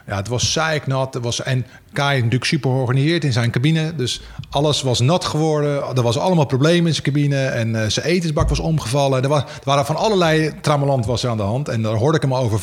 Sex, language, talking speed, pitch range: male, Dutch, 240 wpm, 130-165 Hz